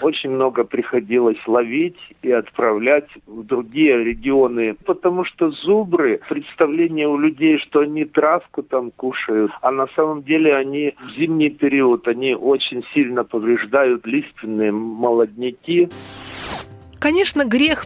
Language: Russian